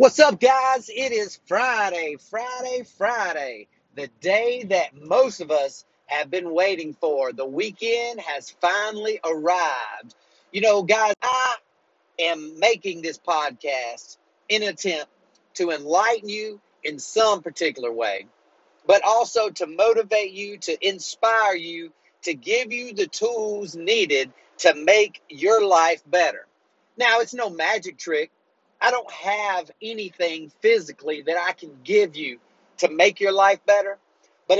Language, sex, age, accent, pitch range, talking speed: English, male, 40-59, American, 170-240 Hz, 140 wpm